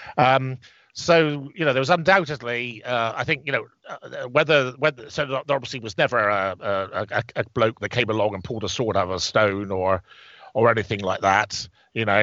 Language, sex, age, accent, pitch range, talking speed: English, male, 50-69, British, 105-130 Hz, 205 wpm